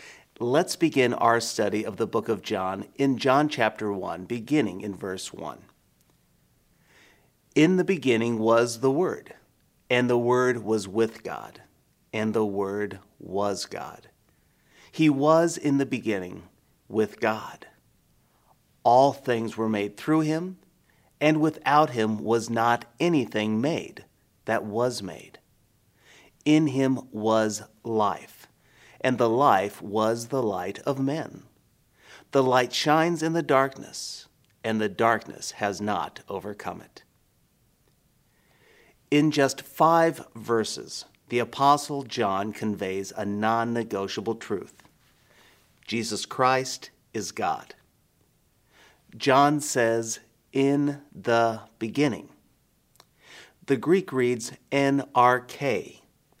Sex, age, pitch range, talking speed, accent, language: male, 40-59, 110-140 Hz, 115 wpm, American, English